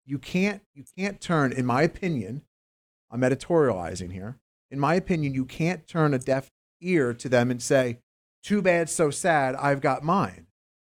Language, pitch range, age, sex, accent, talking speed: English, 125-175 Hz, 40-59, male, American, 170 wpm